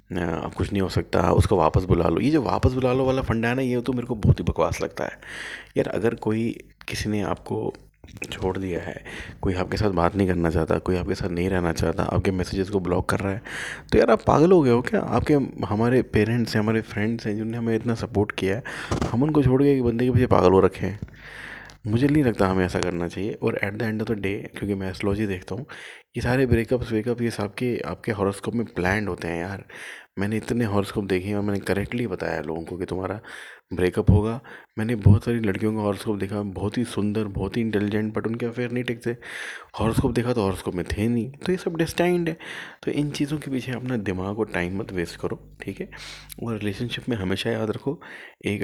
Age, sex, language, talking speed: 30-49, male, Hindi, 230 wpm